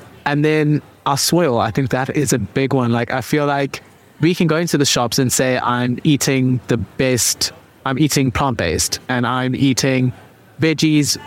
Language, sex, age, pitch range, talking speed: English, male, 20-39, 125-150 Hz, 180 wpm